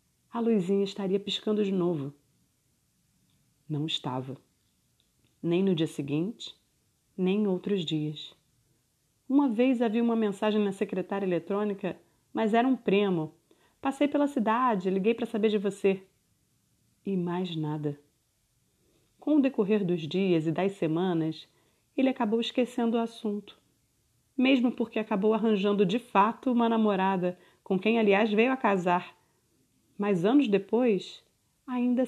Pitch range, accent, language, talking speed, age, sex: 160-220 Hz, Brazilian, Portuguese, 130 wpm, 30-49, female